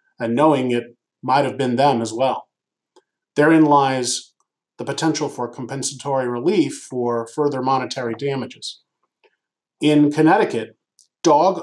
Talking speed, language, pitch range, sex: 120 wpm, English, 125-155 Hz, male